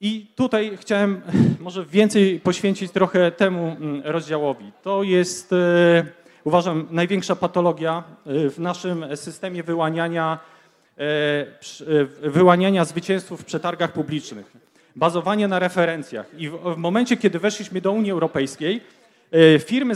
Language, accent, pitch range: Polish, native, 170-205 Hz